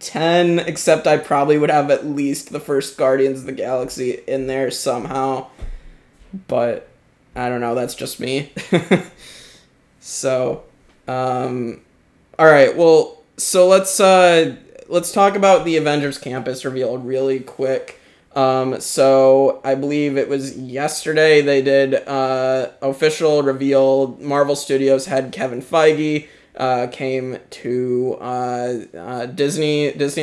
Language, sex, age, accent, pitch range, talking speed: English, male, 20-39, American, 130-150 Hz, 125 wpm